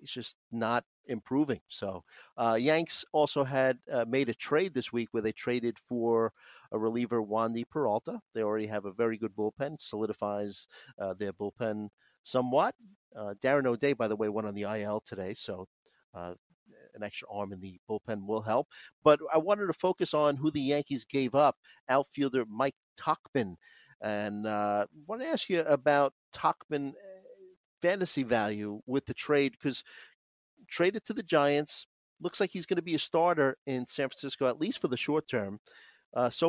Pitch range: 110-145 Hz